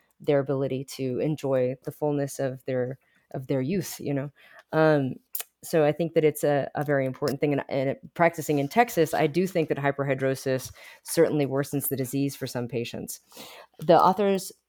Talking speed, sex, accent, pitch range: 175 wpm, female, American, 135-165 Hz